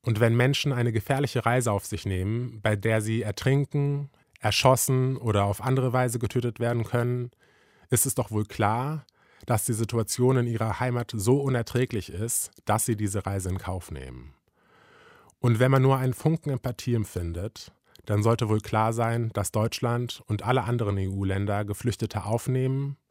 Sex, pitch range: male, 100-125 Hz